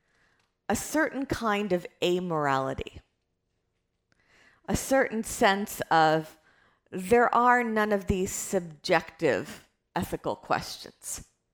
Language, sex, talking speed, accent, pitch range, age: English, female, 90 wpm, American, 155-205 Hz, 50-69